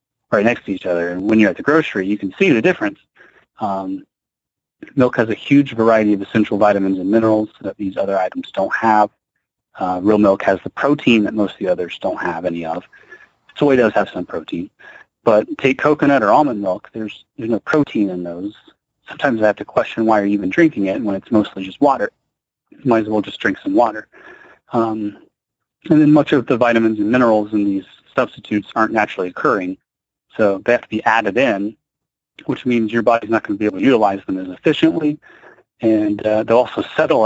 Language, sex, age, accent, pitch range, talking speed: English, male, 30-49, American, 105-145 Hz, 210 wpm